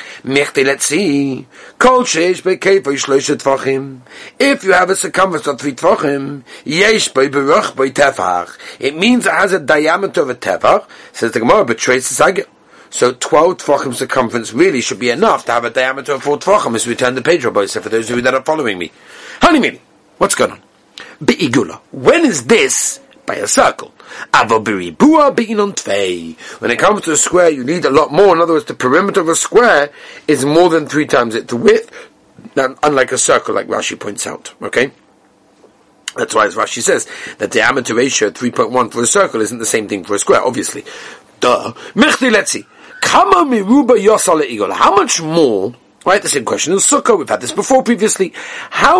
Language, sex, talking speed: English, male, 170 wpm